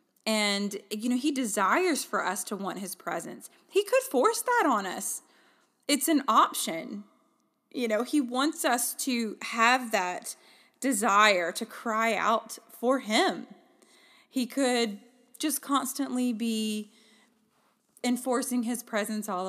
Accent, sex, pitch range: American, female, 200-275 Hz